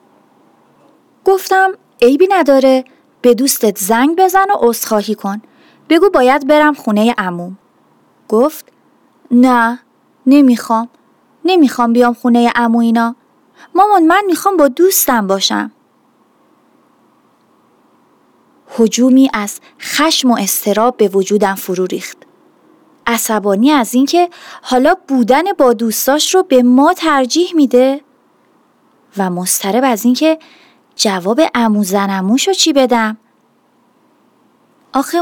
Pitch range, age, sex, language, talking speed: 225-315 Hz, 30-49, female, Persian, 100 wpm